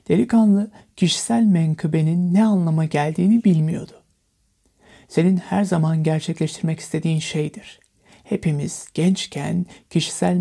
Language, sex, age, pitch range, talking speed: Turkish, male, 60-79, 160-200 Hz, 90 wpm